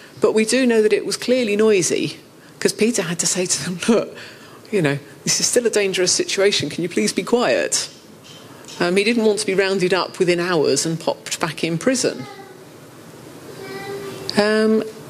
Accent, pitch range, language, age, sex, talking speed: British, 155-215 Hz, English, 40-59, female, 185 wpm